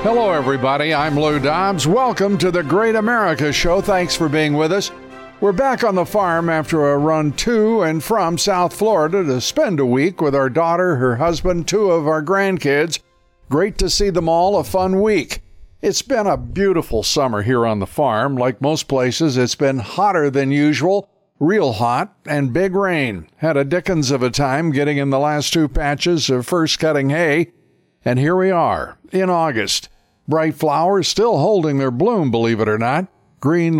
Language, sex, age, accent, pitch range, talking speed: English, male, 60-79, American, 140-180 Hz, 185 wpm